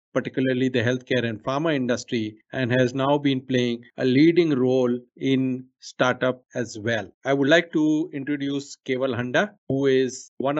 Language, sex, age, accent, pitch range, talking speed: English, male, 50-69, Indian, 125-150 Hz, 160 wpm